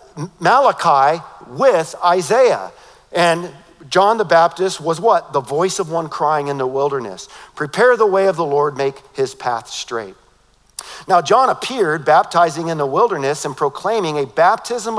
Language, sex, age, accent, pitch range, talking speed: English, male, 50-69, American, 160-205 Hz, 150 wpm